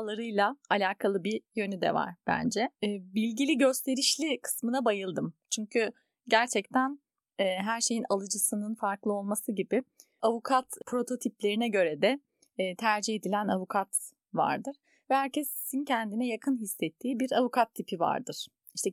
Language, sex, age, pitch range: Turkish, female, 30-49, 200-255 Hz